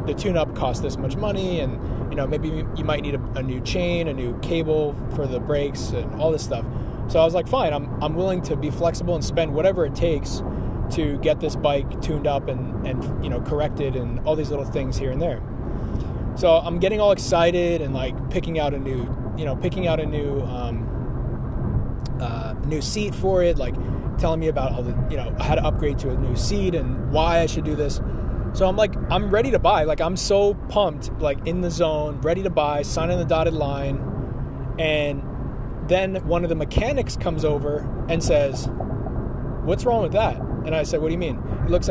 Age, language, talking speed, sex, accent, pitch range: 20-39, English, 215 wpm, male, American, 125-160 Hz